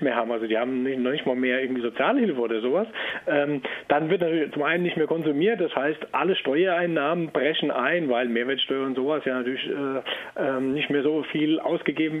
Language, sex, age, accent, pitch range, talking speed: German, male, 40-59, German, 140-180 Hz, 200 wpm